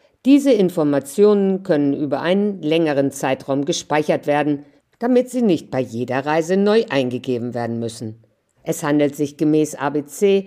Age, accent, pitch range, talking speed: 50-69, German, 140-175 Hz, 140 wpm